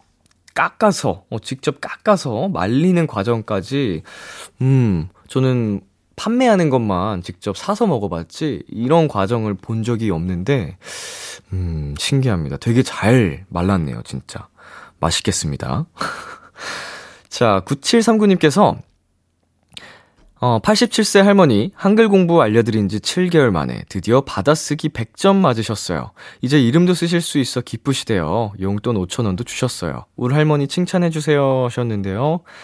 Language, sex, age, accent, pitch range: Korean, male, 20-39, native, 95-150 Hz